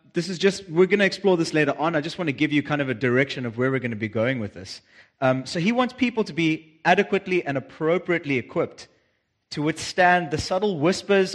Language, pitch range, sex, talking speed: English, 125-165 Hz, male, 240 wpm